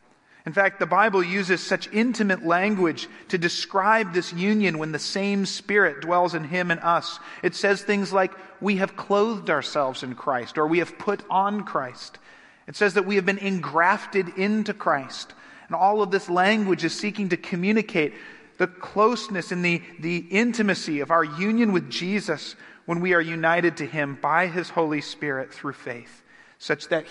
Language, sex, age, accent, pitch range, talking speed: English, male, 40-59, American, 155-200 Hz, 175 wpm